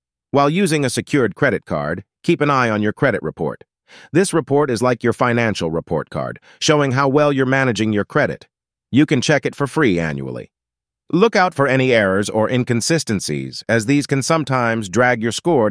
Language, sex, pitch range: English, male, 95-135 Hz